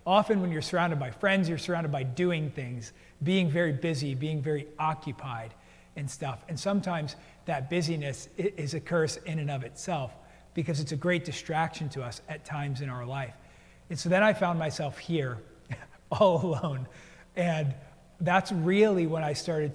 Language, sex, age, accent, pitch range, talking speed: English, male, 40-59, American, 140-170 Hz, 175 wpm